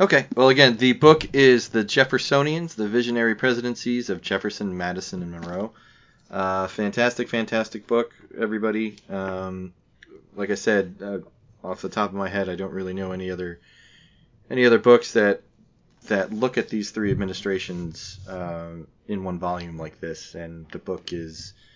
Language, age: English, 20-39